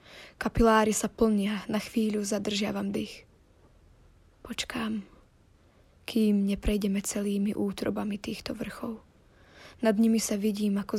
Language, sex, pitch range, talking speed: Slovak, female, 200-225 Hz, 105 wpm